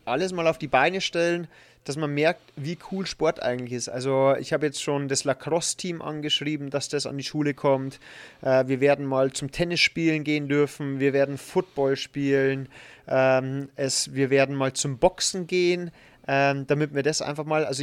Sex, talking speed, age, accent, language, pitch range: male, 170 wpm, 30-49, German, German, 140-175 Hz